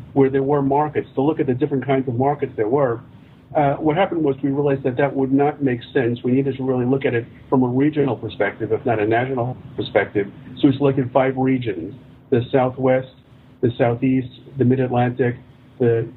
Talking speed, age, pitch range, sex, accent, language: 200 wpm, 50-69, 125-140 Hz, male, American, English